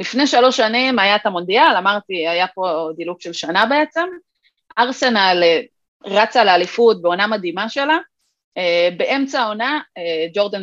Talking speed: 125 wpm